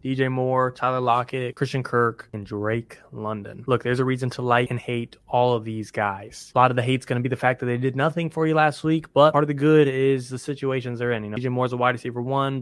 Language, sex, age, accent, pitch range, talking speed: English, male, 20-39, American, 120-135 Hz, 270 wpm